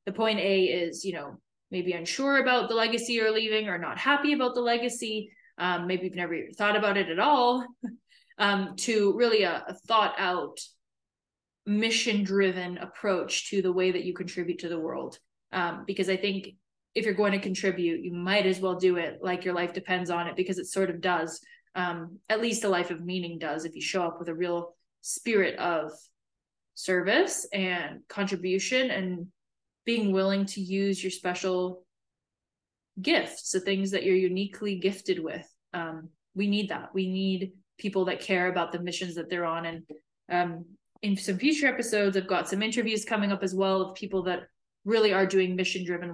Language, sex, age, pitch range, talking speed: English, female, 20-39, 180-210 Hz, 185 wpm